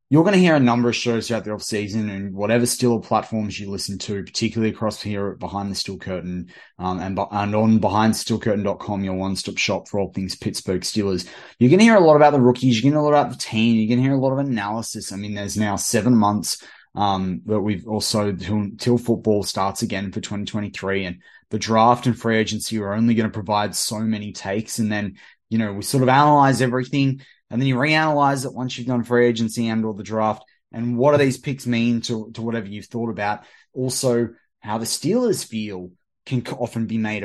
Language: English